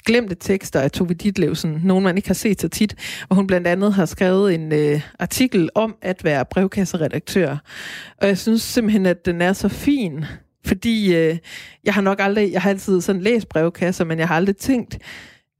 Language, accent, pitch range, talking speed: Danish, native, 175-215 Hz, 190 wpm